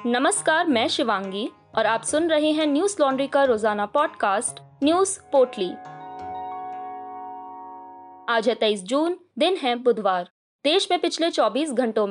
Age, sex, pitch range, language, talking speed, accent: 20-39, female, 215-295 Hz, Hindi, 135 wpm, native